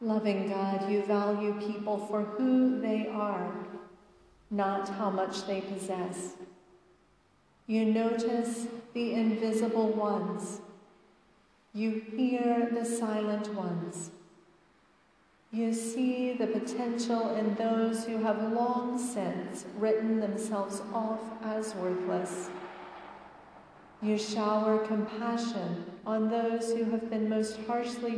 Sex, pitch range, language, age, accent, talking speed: female, 200-230 Hz, English, 40-59, American, 105 wpm